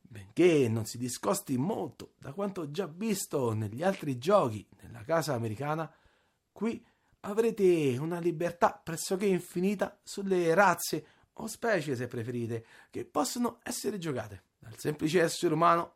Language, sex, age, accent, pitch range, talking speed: Italian, male, 40-59, native, 140-205 Hz, 130 wpm